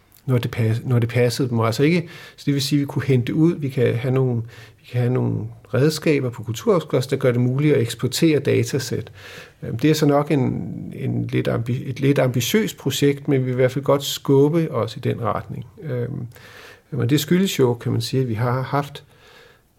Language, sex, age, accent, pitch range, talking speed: Danish, male, 50-69, native, 120-140 Hz, 210 wpm